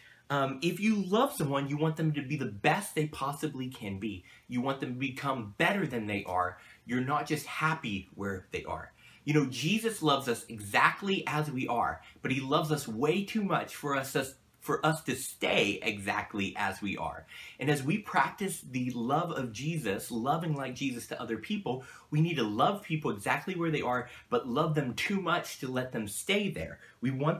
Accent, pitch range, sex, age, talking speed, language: American, 115-160 Hz, male, 30-49, 205 wpm, English